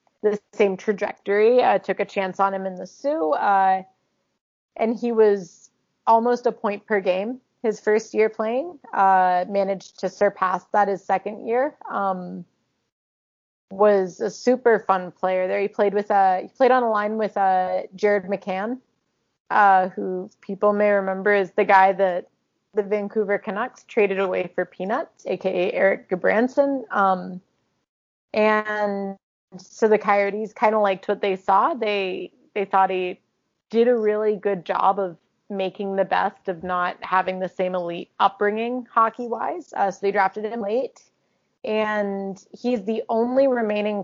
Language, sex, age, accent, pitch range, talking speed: English, female, 30-49, American, 190-215 Hz, 155 wpm